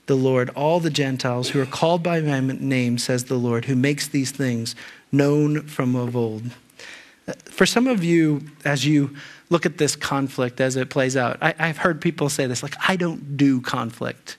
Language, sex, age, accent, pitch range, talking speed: English, male, 40-59, American, 140-175 Hz, 190 wpm